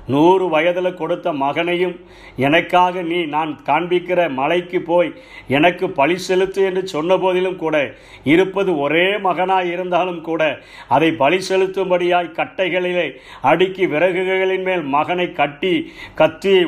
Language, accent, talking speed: Tamil, native, 110 wpm